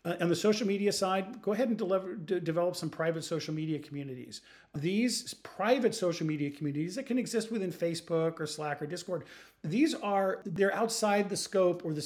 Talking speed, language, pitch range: 185 wpm, English, 150-185 Hz